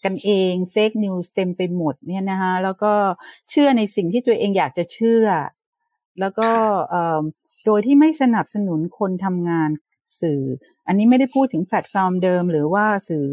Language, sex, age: Thai, female, 60-79